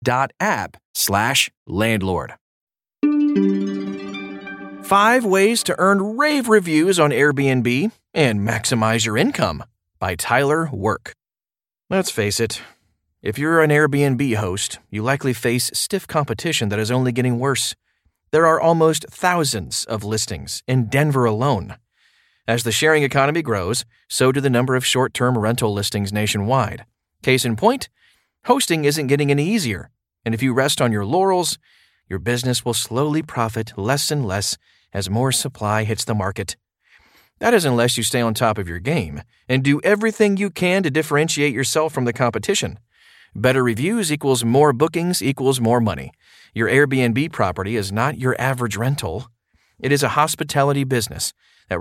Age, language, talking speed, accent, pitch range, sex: 30-49, English, 150 wpm, American, 110-150 Hz, male